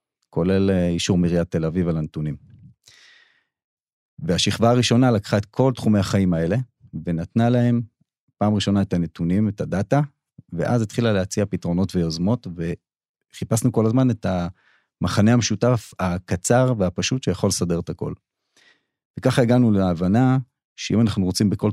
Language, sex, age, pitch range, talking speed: Hebrew, male, 40-59, 85-110 Hz, 130 wpm